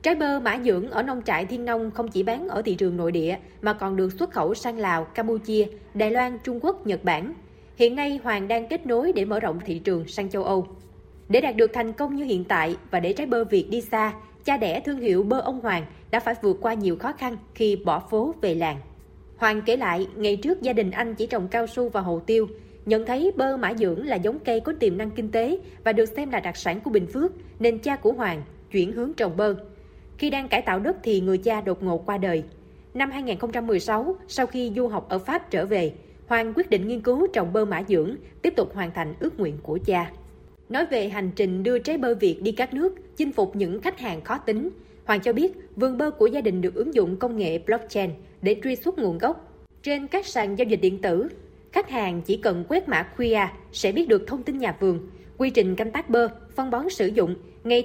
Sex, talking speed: female, 240 wpm